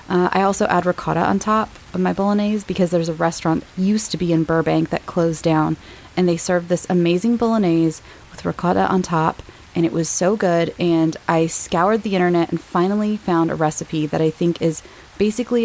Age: 20-39